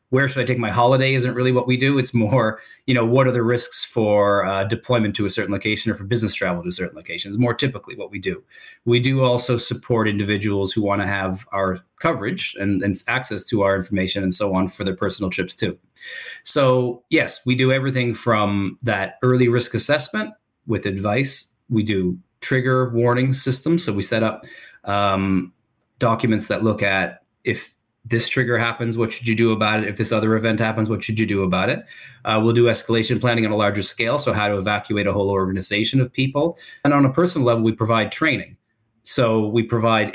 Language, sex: English, male